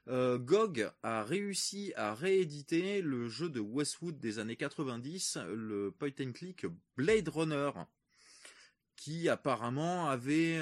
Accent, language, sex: French, French, male